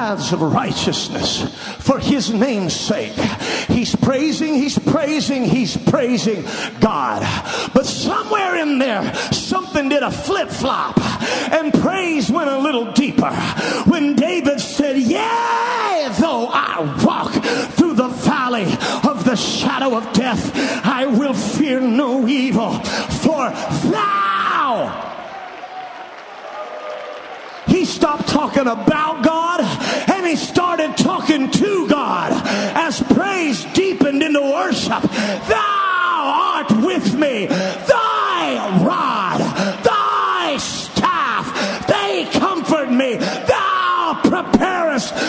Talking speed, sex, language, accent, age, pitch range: 105 wpm, male, English, American, 40-59, 235-305 Hz